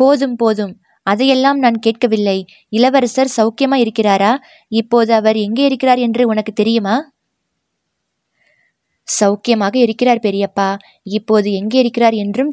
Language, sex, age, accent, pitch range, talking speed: Tamil, female, 20-39, native, 205-250 Hz, 105 wpm